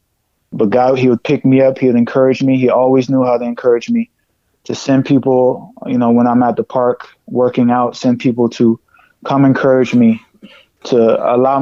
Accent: American